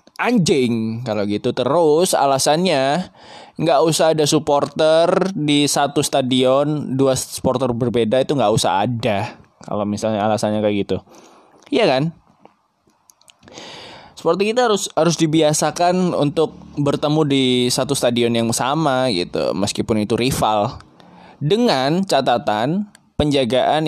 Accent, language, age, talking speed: native, Indonesian, 20-39, 115 wpm